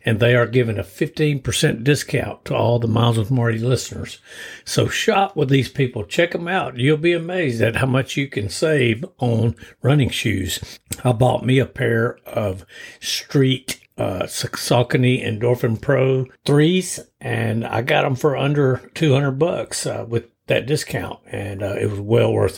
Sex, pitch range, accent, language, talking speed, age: male, 110-130 Hz, American, English, 170 wpm, 60-79